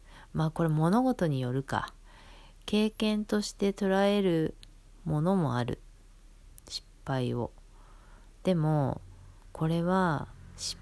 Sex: female